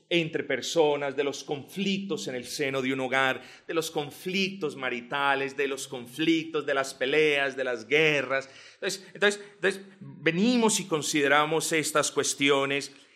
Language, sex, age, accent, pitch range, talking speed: Spanish, male, 40-59, Colombian, 140-210 Hz, 145 wpm